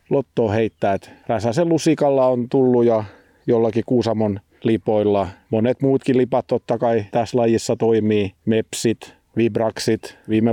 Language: Finnish